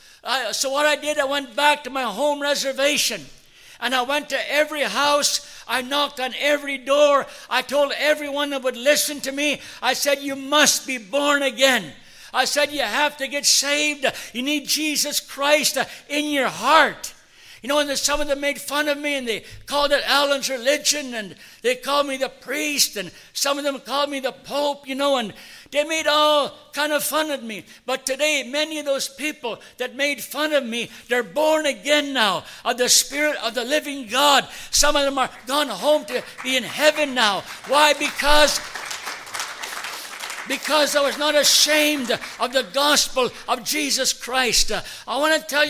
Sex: male